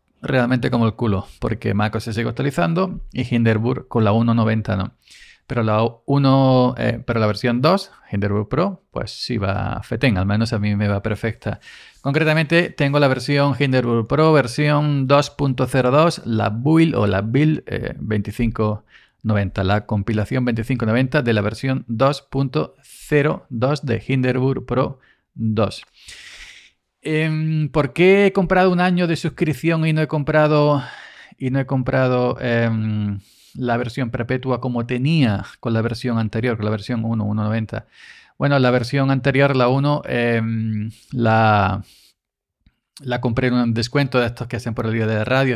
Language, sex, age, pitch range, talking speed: Spanish, male, 40-59, 110-140 Hz, 145 wpm